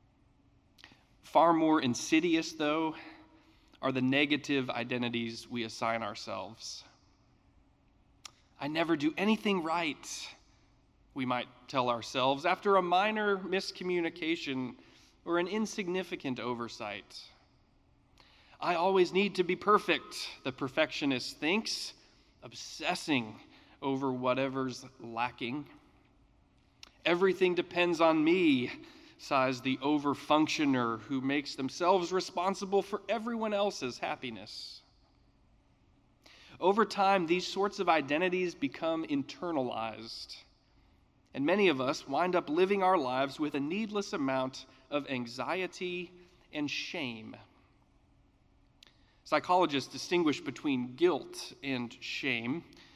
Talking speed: 100 wpm